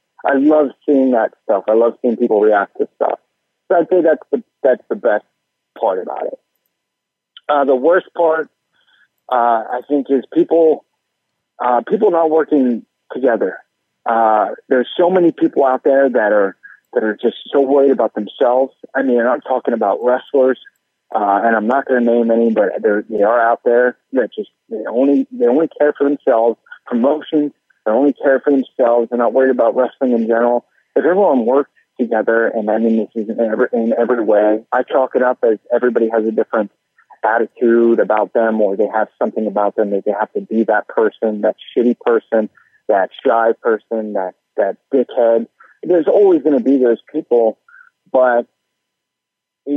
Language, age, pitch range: English, 50-69, 115-140 Hz